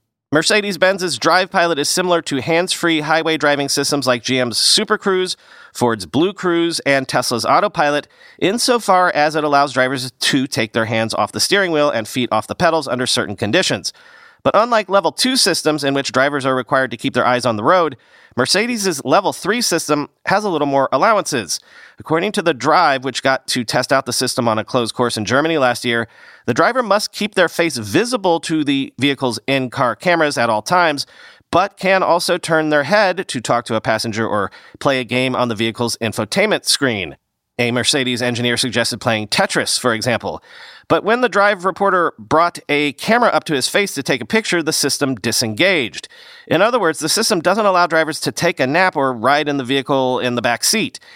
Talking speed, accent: 200 wpm, American